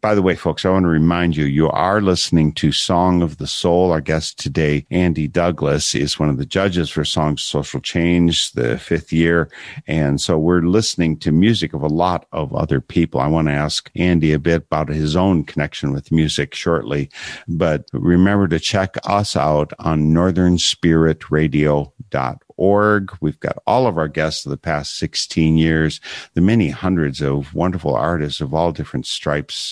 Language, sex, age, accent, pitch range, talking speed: English, male, 50-69, American, 75-90 Hz, 185 wpm